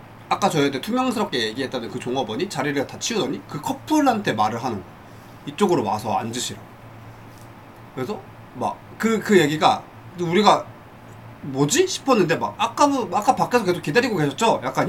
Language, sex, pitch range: Korean, male, 120-205 Hz